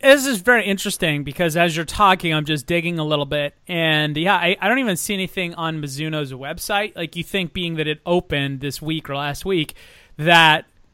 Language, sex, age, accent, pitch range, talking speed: English, male, 30-49, American, 160-215 Hz, 210 wpm